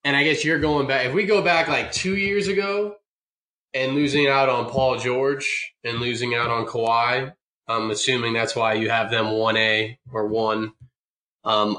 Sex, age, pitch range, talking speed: male, 20-39, 115-150 Hz, 185 wpm